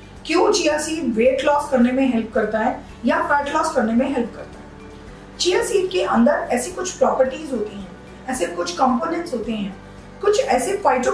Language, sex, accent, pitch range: Hindi, female, native, 225-280 Hz